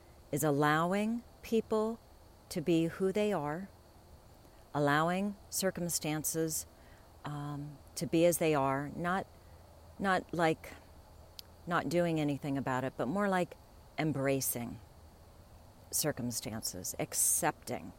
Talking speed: 100 wpm